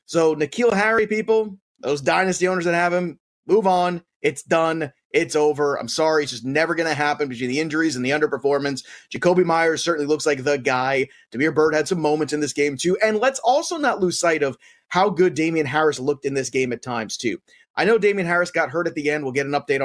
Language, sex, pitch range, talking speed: English, male, 145-215 Hz, 235 wpm